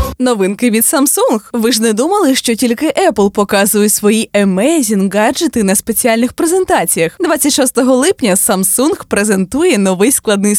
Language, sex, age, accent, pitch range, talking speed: Ukrainian, female, 20-39, native, 210-290 Hz, 130 wpm